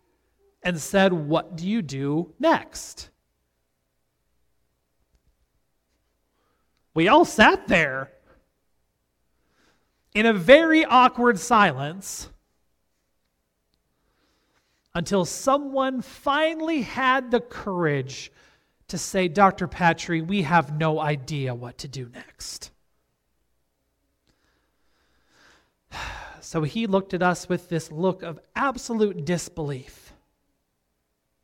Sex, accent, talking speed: male, American, 85 wpm